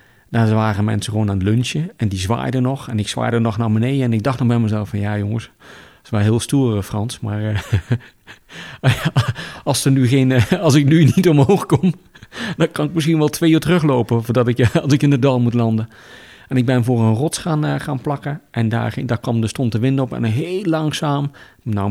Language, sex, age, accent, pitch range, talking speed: Dutch, male, 40-59, Dutch, 110-130 Hz, 220 wpm